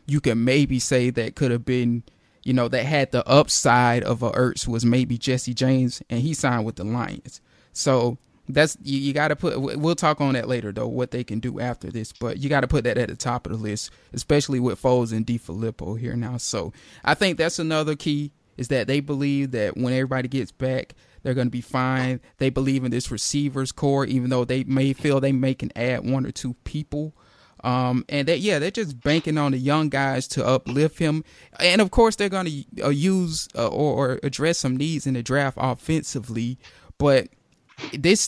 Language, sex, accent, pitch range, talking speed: English, male, American, 125-145 Hz, 215 wpm